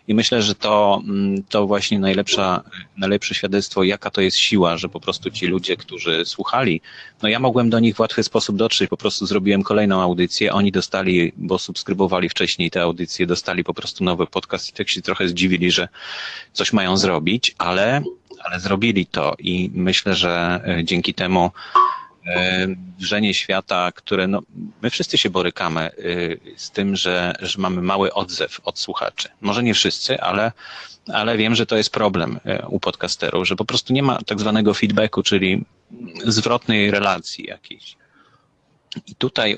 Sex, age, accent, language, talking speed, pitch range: male, 30-49, native, Polish, 160 wpm, 90-110 Hz